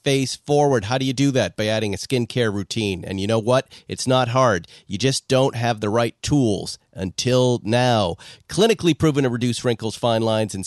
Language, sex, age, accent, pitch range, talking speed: English, male, 40-59, American, 115-155 Hz, 200 wpm